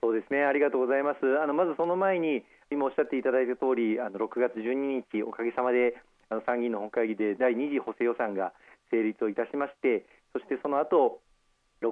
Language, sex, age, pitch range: Japanese, male, 40-59, 115-135 Hz